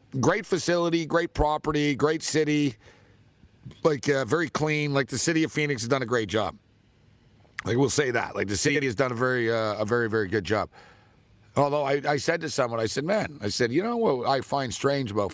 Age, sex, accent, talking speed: 50-69, male, American, 210 wpm